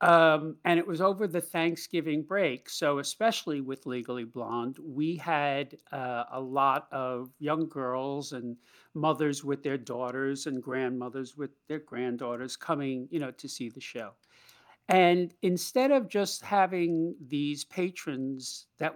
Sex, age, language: male, 50-69, English